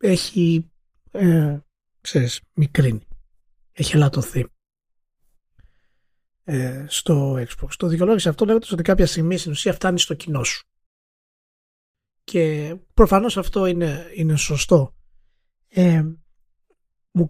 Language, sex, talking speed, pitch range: Greek, male, 95 wpm, 135-190 Hz